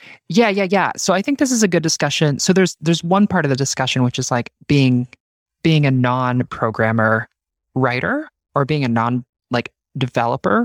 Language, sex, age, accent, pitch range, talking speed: English, male, 20-39, American, 125-175 Hz, 185 wpm